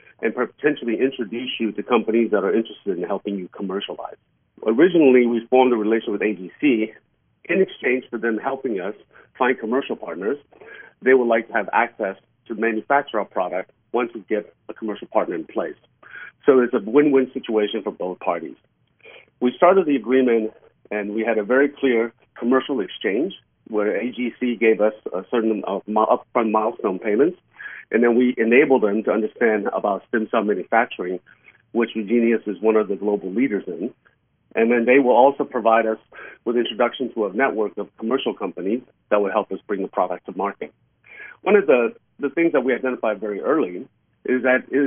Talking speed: 180 wpm